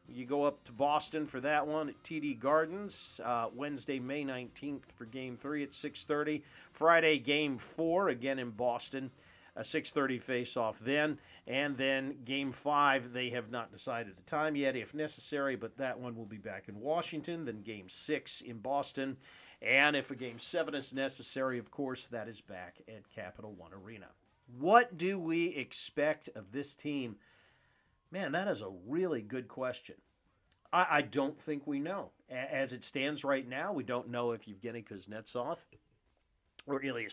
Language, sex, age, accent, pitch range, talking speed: English, male, 40-59, American, 120-150 Hz, 175 wpm